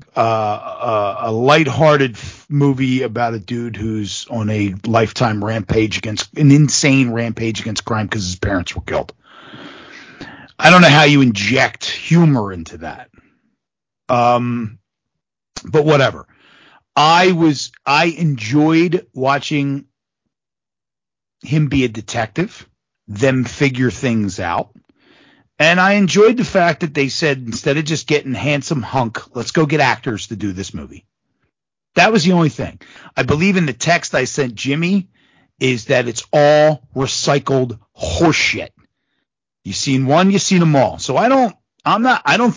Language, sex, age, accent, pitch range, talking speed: English, male, 40-59, American, 115-155 Hz, 145 wpm